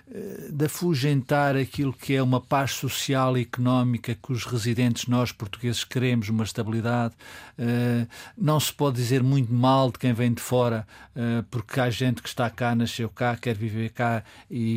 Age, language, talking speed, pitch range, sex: 50-69, Portuguese, 165 wpm, 115-130 Hz, male